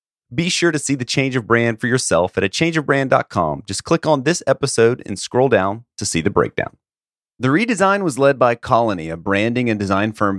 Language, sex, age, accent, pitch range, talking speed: English, male, 30-49, American, 120-165 Hz, 200 wpm